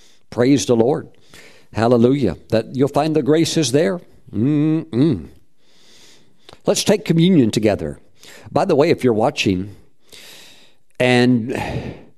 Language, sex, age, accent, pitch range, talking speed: English, male, 50-69, American, 115-155 Hz, 115 wpm